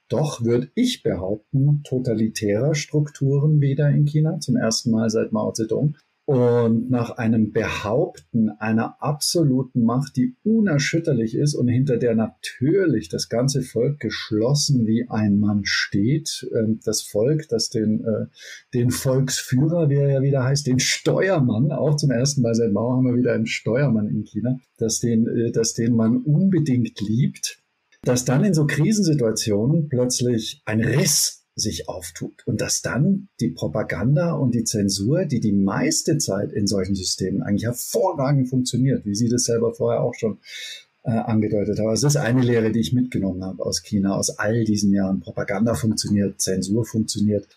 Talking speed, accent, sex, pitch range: 160 wpm, German, male, 110-140 Hz